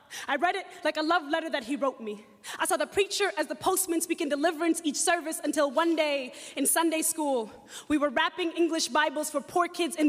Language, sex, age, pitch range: English, female, 20-39, 275-320 Hz